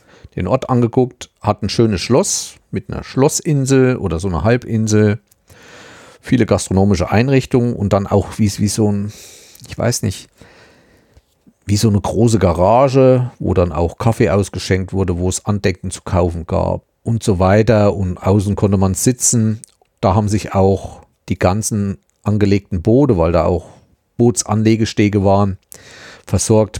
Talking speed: 150 wpm